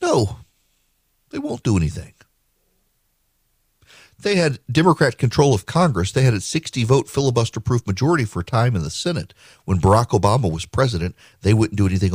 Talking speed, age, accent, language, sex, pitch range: 160 wpm, 40-59, American, English, male, 105-145 Hz